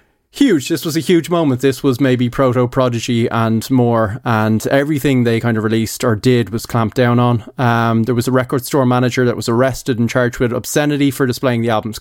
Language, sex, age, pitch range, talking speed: English, male, 20-39, 120-135 Hz, 210 wpm